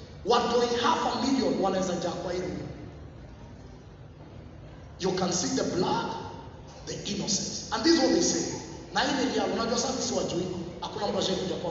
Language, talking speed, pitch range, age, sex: English, 145 wpm, 185-290 Hz, 30-49, male